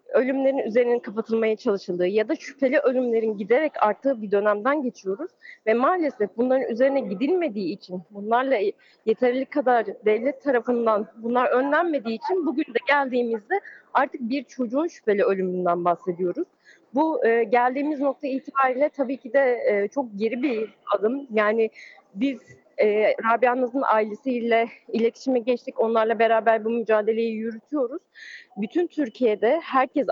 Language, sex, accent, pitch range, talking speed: German, female, Turkish, 210-280 Hz, 125 wpm